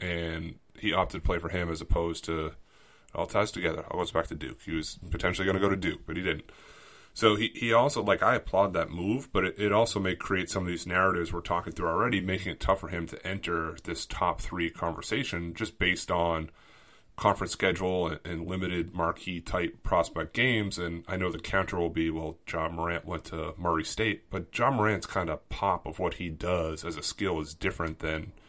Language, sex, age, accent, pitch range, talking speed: English, male, 30-49, American, 85-95 Hz, 220 wpm